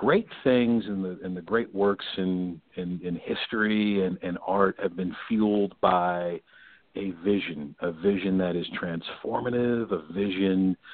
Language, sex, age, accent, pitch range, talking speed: English, male, 50-69, American, 90-100 Hz, 155 wpm